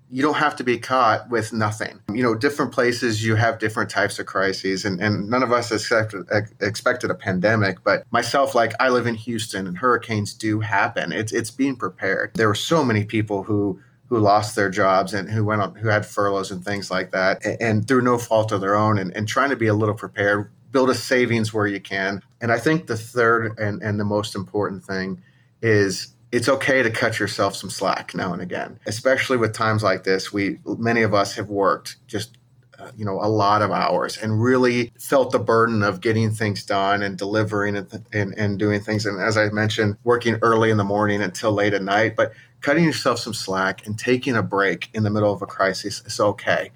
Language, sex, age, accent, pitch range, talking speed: English, male, 30-49, American, 100-120 Hz, 220 wpm